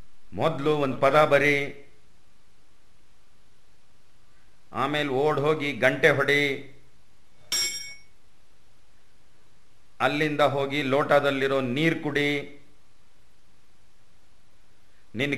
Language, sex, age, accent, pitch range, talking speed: Kannada, male, 50-69, native, 120-155 Hz, 60 wpm